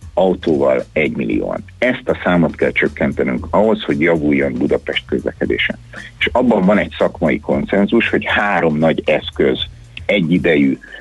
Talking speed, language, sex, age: 130 wpm, Hungarian, male, 60-79